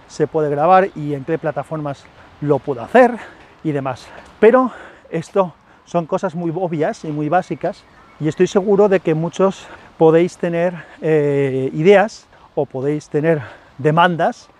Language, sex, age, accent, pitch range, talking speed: Spanish, male, 40-59, Spanish, 145-175 Hz, 140 wpm